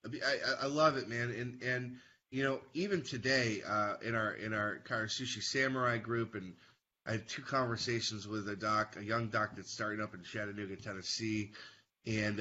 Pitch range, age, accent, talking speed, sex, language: 105-130 Hz, 20-39, American, 175 wpm, male, English